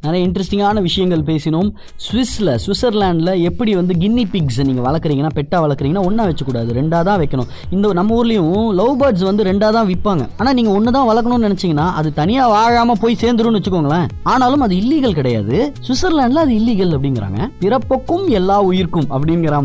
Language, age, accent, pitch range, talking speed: Tamil, 20-39, native, 155-215 Hz, 155 wpm